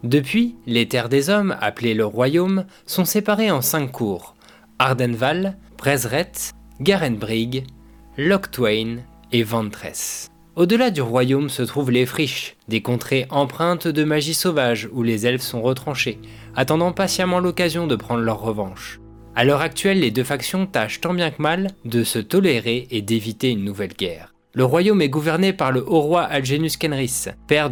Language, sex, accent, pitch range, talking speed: French, male, French, 115-170 Hz, 160 wpm